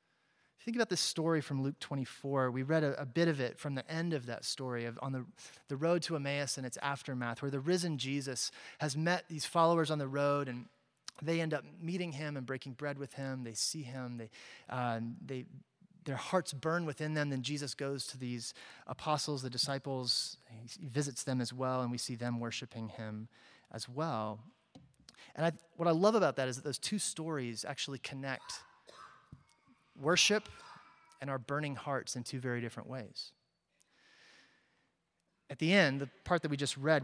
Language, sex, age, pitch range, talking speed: English, male, 30-49, 130-165 Hz, 190 wpm